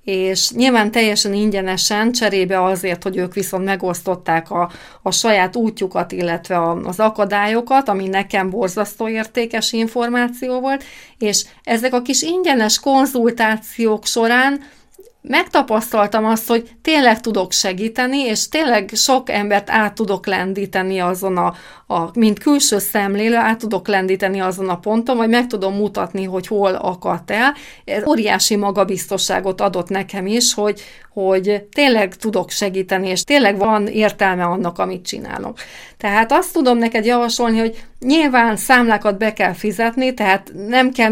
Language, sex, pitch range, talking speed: Hungarian, female, 195-235 Hz, 140 wpm